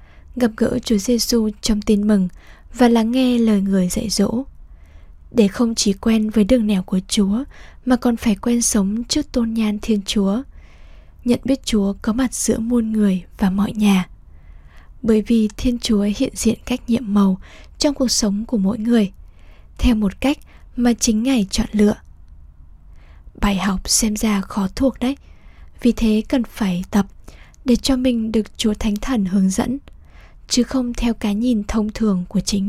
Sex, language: female, Vietnamese